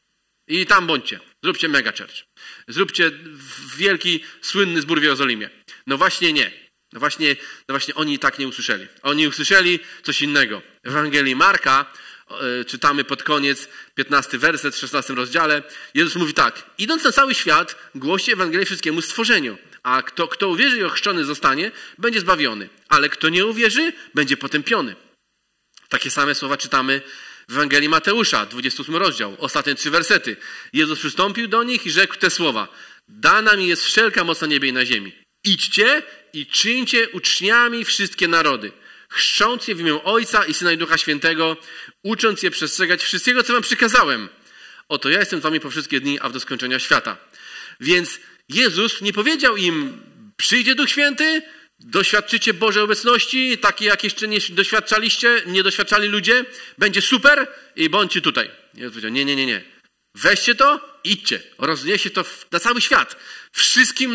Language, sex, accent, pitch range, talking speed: Polish, male, native, 155-235 Hz, 160 wpm